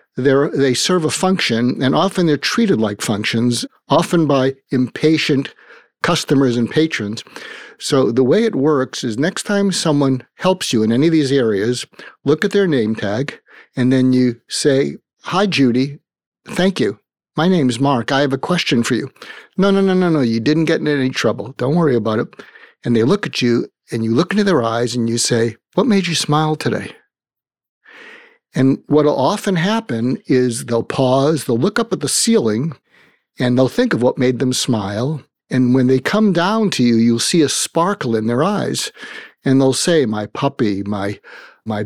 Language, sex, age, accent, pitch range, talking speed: English, male, 50-69, American, 120-165 Hz, 190 wpm